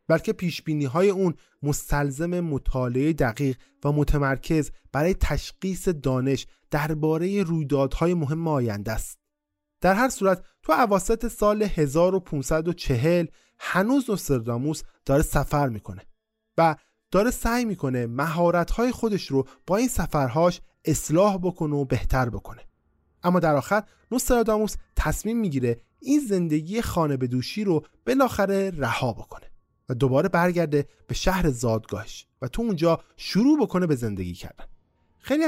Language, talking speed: Persian, 120 wpm